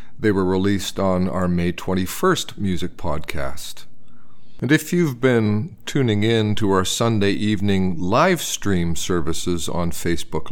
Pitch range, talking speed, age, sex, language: 90-115 Hz, 135 wpm, 50-69, male, English